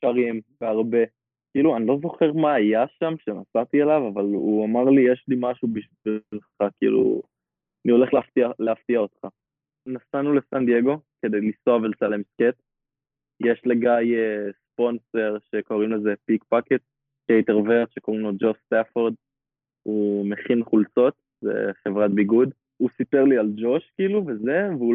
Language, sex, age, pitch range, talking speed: Hebrew, male, 20-39, 110-130 Hz, 135 wpm